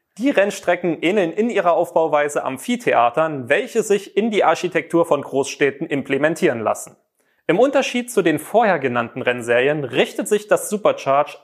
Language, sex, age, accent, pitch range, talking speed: German, male, 30-49, German, 145-195 Hz, 140 wpm